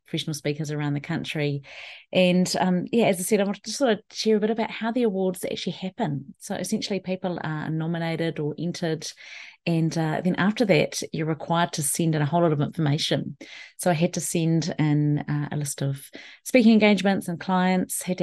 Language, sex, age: English, female, 30-49